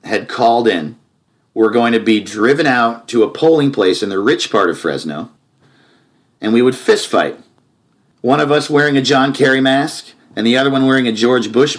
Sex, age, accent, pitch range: male, 40-59, American, 115-165 Hz